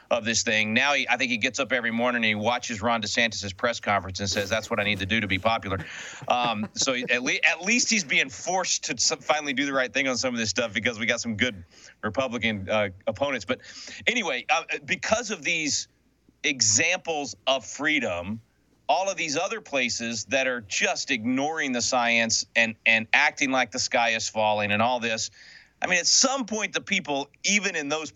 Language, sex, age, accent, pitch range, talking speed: English, male, 40-59, American, 110-180 Hz, 205 wpm